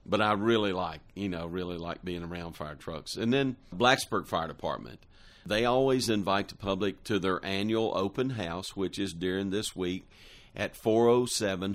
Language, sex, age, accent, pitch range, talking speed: English, male, 50-69, American, 95-115 Hz, 175 wpm